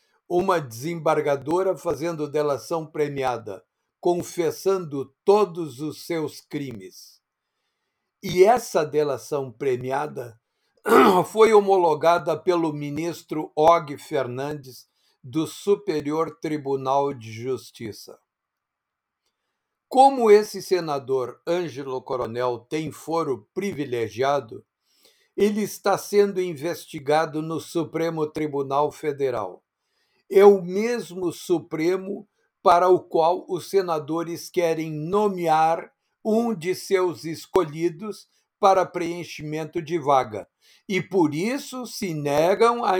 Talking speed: 90 wpm